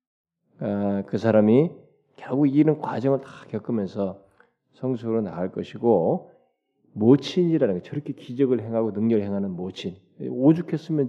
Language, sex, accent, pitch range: Korean, male, native, 105-155 Hz